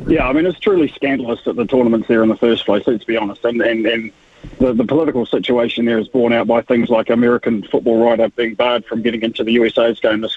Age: 30-49